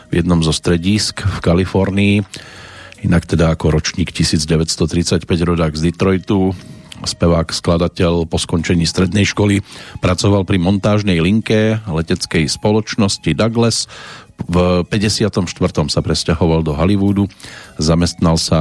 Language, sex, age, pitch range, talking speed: Slovak, male, 40-59, 85-105 Hz, 115 wpm